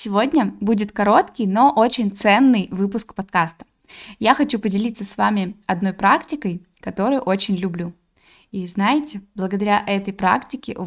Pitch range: 195-240 Hz